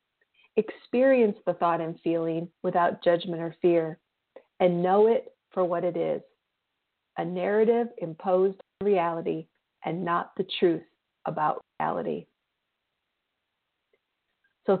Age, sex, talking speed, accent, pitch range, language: 40-59, female, 115 wpm, American, 175-220 Hz, English